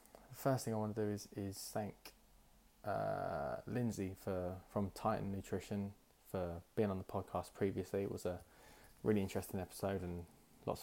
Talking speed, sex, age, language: 160 wpm, male, 20-39, English